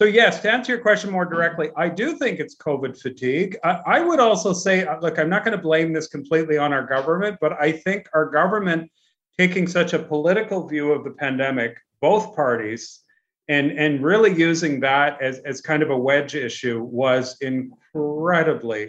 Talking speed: 185 wpm